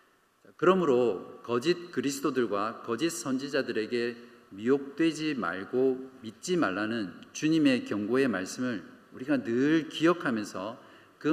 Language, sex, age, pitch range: Korean, male, 50-69, 125-170 Hz